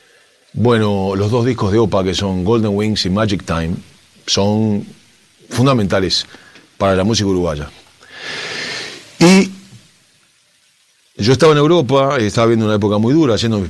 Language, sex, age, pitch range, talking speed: Spanish, male, 40-59, 95-125 Hz, 140 wpm